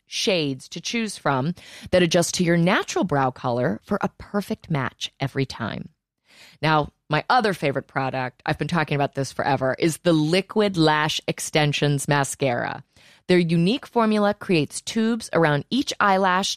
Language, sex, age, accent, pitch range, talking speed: English, female, 30-49, American, 150-220 Hz, 150 wpm